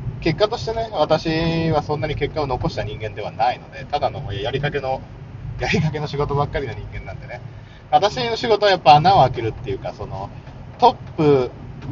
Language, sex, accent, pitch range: Japanese, male, native, 125-155 Hz